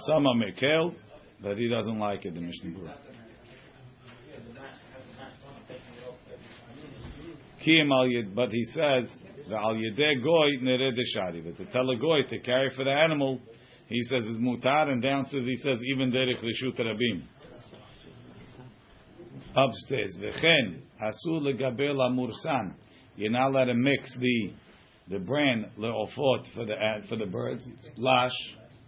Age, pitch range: 50-69, 120-140 Hz